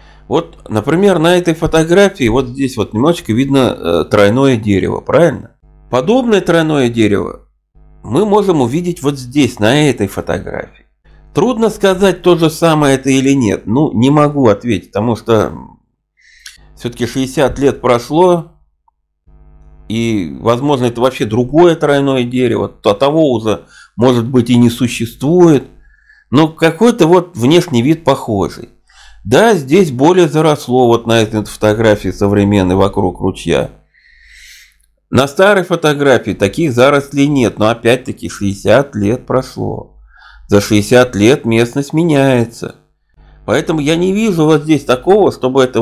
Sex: male